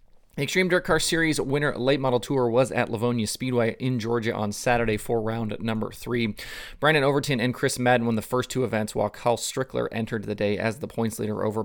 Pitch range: 105-125 Hz